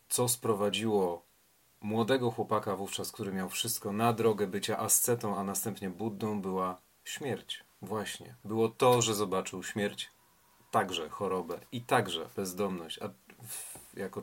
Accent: native